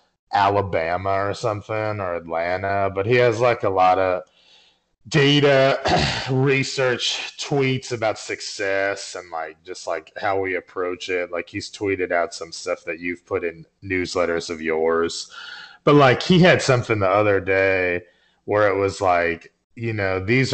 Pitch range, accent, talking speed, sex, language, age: 95-125 Hz, American, 155 wpm, male, English, 30-49